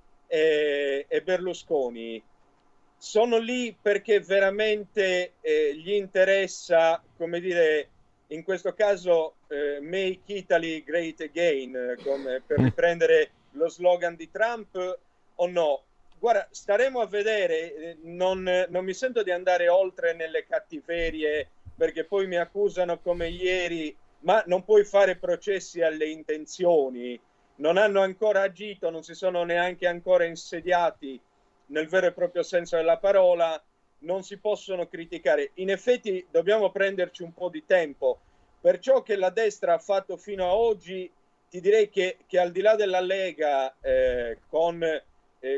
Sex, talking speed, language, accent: male, 140 wpm, Italian, native